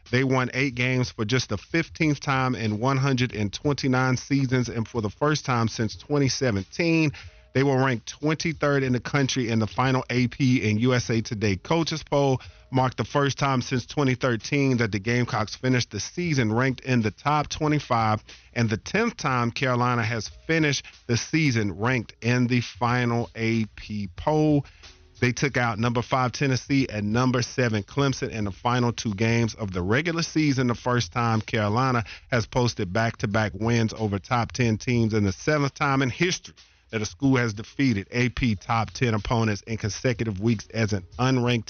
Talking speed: 170 wpm